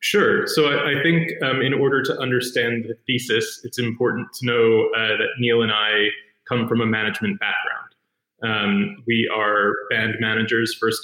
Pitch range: 110-140 Hz